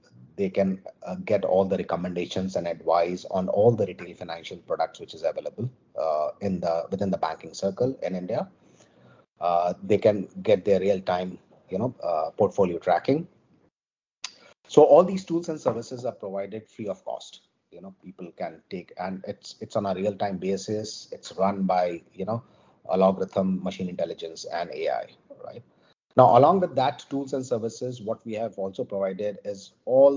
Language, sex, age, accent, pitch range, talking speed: English, male, 30-49, Indian, 90-120 Hz, 175 wpm